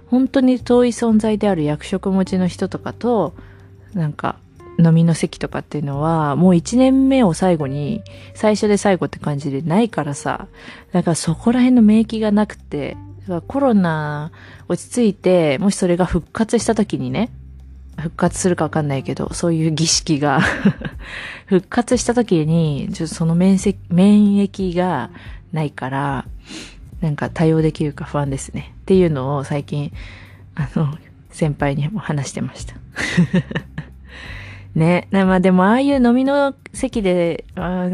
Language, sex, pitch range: Japanese, female, 145-205 Hz